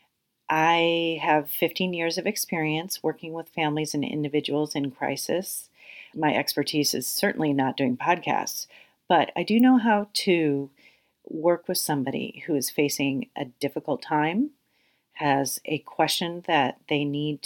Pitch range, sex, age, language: 140-165 Hz, female, 40-59, English